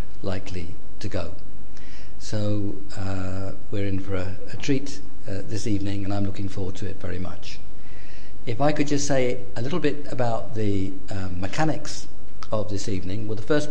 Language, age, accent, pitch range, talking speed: English, 50-69, British, 100-125 Hz, 175 wpm